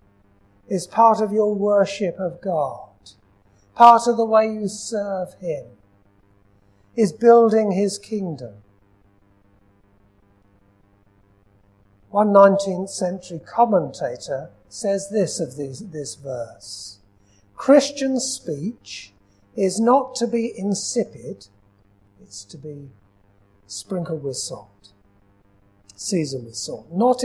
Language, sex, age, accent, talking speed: English, male, 60-79, British, 100 wpm